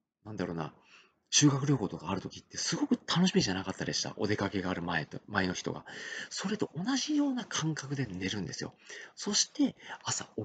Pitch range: 95-145 Hz